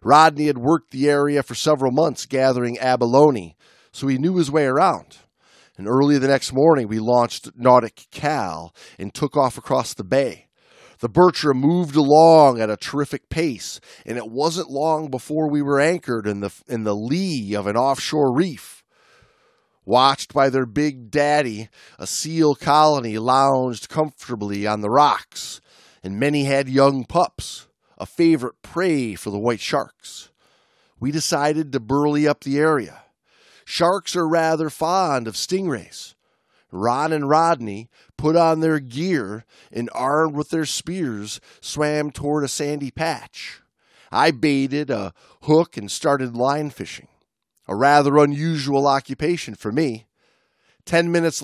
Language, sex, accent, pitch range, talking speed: English, male, American, 125-155 Hz, 150 wpm